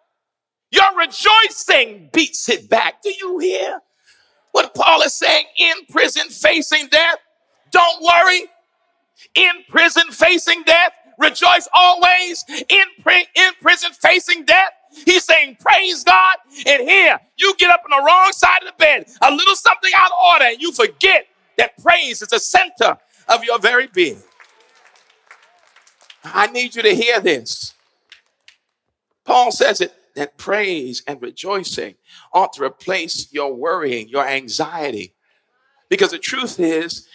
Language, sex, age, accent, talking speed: English, male, 50-69, American, 140 wpm